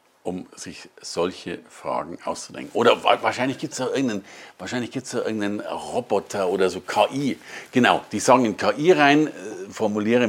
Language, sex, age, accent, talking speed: German, male, 50-69, German, 135 wpm